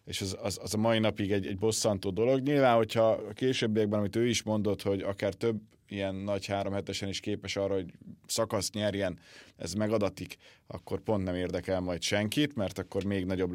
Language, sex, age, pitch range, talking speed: Hungarian, male, 30-49, 95-115 Hz, 190 wpm